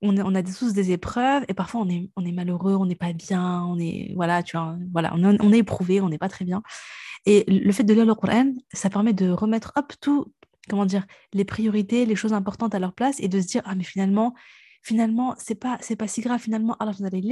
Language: French